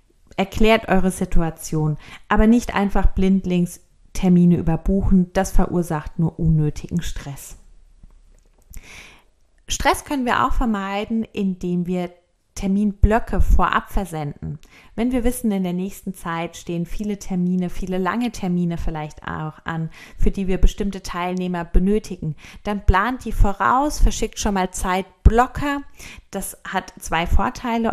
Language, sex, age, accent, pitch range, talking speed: German, female, 30-49, German, 170-215 Hz, 125 wpm